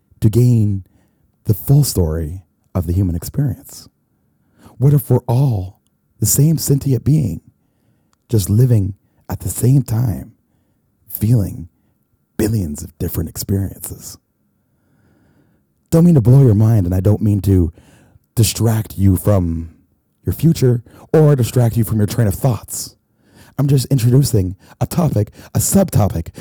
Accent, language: American, English